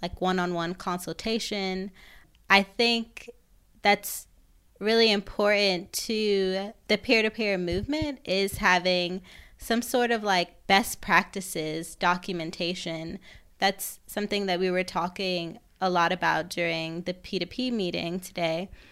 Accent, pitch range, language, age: American, 170-195 Hz, English, 20-39